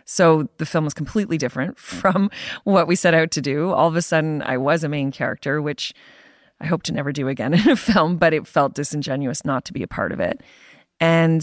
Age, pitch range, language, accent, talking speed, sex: 30-49, 145-175 Hz, English, American, 230 wpm, female